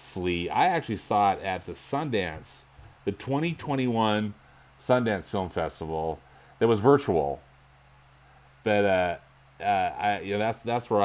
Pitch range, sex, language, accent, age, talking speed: 85-110 Hz, male, English, American, 30-49, 135 wpm